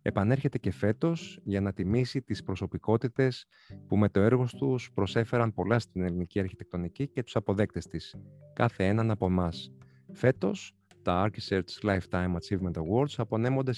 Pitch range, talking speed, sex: 95-125 Hz, 145 wpm, male